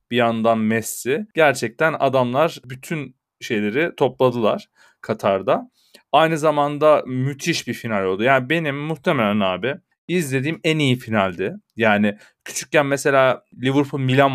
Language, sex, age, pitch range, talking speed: Turkish, male, 40-59, 120-155 Hz, 115 wpm